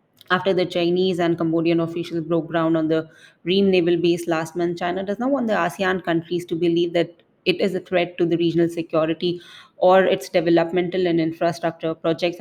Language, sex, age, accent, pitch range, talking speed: English, female, 20-39, Indian, 170-195 Hz, 190 wpm